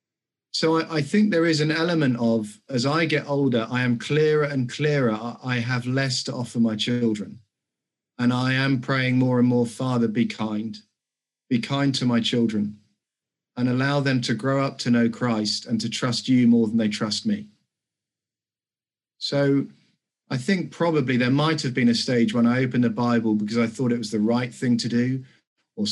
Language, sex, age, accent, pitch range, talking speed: English, male, 40-59, British, 120-145 Hz, 195 wpm